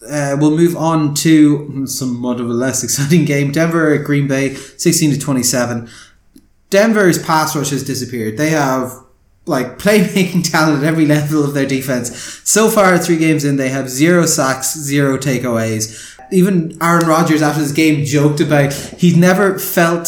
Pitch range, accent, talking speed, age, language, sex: 145-175 Hz, Irish, 170 wpm, 20-39, English, male